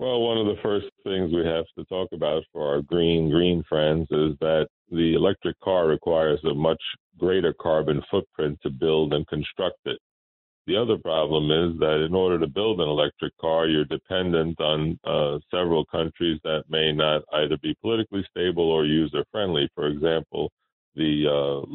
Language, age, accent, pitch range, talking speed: English, 50-69, American, 75-80 Hz, 175 wpm